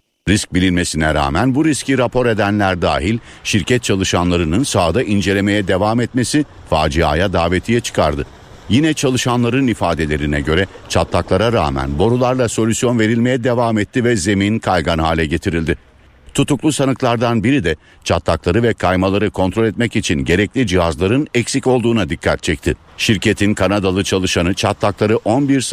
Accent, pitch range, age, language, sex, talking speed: native, 85-120 Hz, 60-79, Turkish, male, 125 wpm